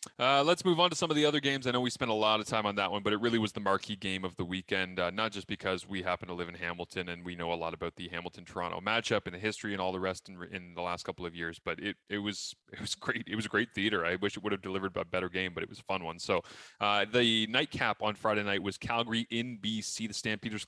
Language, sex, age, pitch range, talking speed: English, male, 20-39, 90-110 Hz, 300 wpm